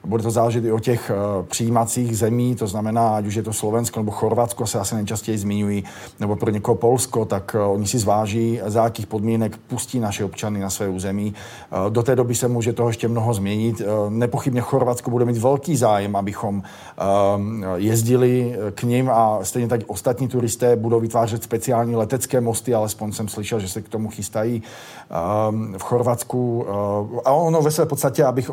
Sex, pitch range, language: male, 110-125 Hz, Czech